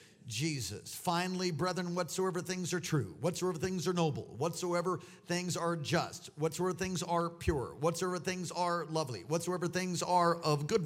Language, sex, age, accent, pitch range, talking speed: English, male, 50-69, American, 110-155 Hz, 155 wpm